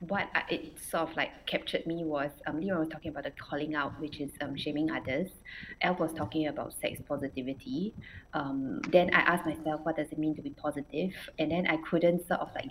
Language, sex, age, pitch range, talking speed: English, female, 20-39, 150-170 Hz, 220 wpm